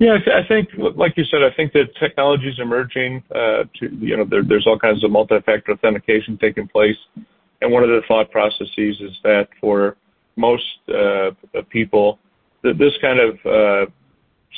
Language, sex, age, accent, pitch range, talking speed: English, male, 40-59, American, 105-130 Hz, 180 wpm